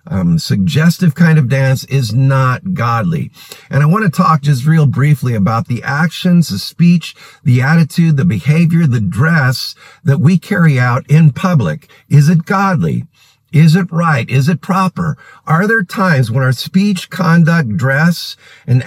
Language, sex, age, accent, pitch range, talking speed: English, male, 50-69, American, 140-180 Hz, 160 wpm